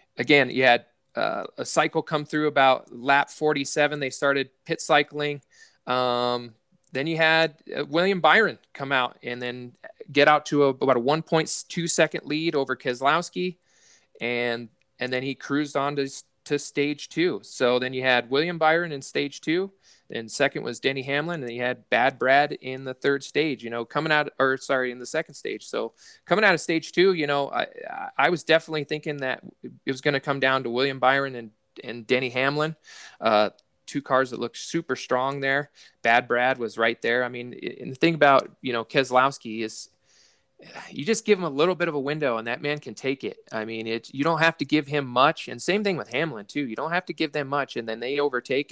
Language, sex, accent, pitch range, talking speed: English, male, American, 120-150 Hz, 210 wpm